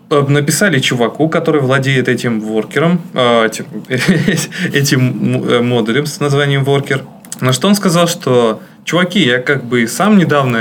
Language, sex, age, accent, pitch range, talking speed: Russian, male, 20-39, native, 125-165 Hz, 140 wpm